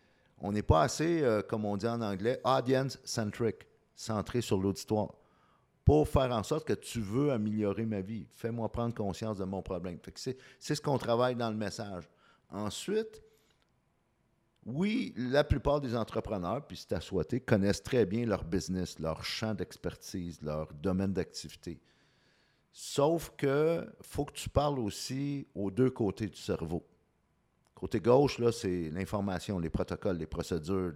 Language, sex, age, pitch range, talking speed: French, male, 50-69, 95-120 Hz, 160 wpm